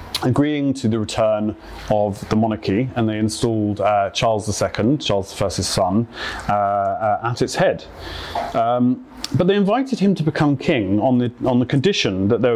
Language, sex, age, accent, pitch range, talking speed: English, male, 30-49, British, 100-125 Hz, 170 wpm